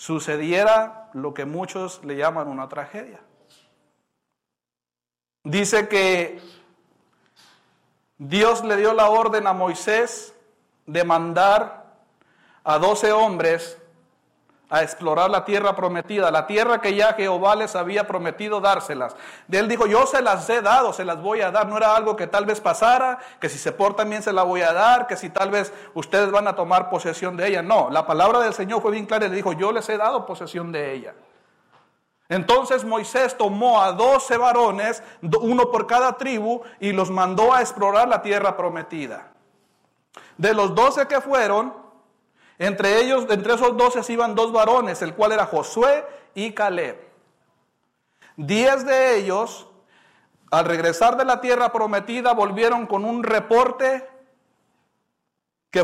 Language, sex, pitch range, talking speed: Spanish, male, 180-235 Hz, 155 wpm